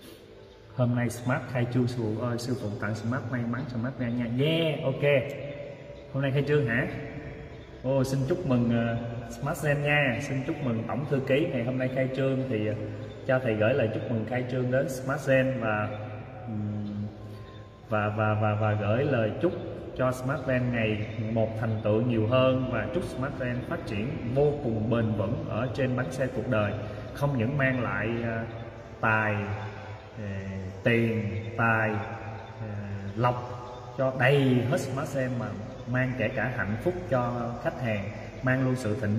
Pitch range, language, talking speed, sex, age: 110-130 Hz, Vietnamese, 180 wpm, male, 20-39